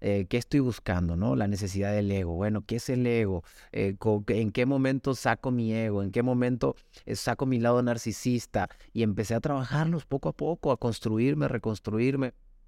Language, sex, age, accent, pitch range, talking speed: Spanish, male, 30-49, Mexican, 100-125 Hz, 180 wpm